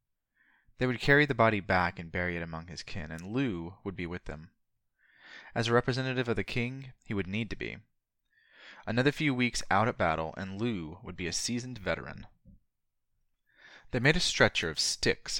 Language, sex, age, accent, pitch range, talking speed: English, male, 20-39, American, 90-120 Hz, 185 wpm